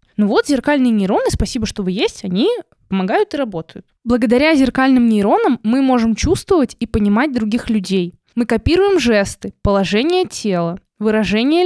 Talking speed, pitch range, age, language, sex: 145 wpm, 220-300 Hz, 20-39, Russian, female